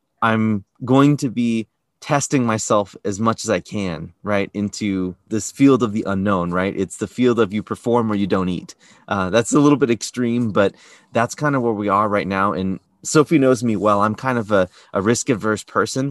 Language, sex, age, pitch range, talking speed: English, male, 30-49, 100-125 Hz, 210 wpm